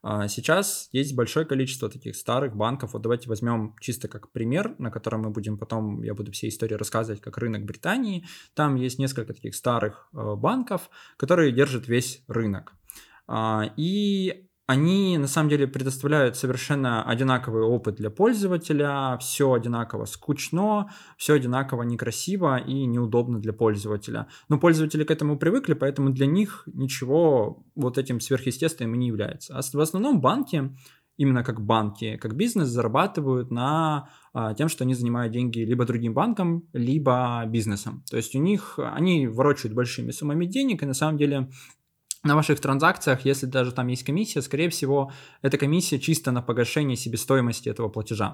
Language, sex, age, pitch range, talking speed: Russian, male, 20-39, 115-150 Hz, 155 wpm